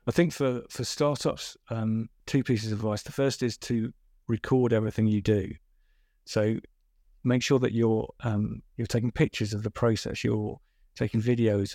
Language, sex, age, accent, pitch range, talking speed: English, male, 50-69, British, 110-125 Hz, 170 wpm